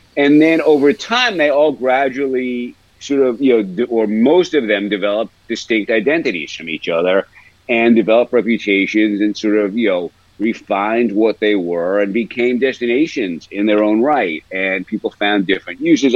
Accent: American